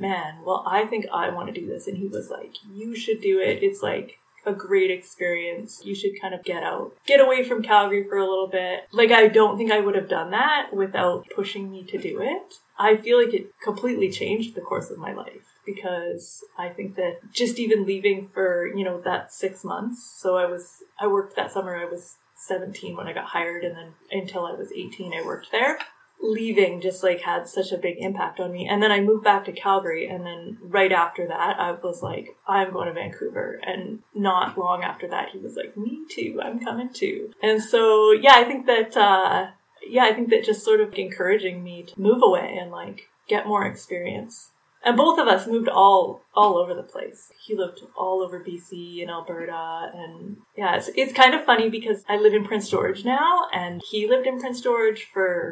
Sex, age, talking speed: female, 20-39, 220 wpm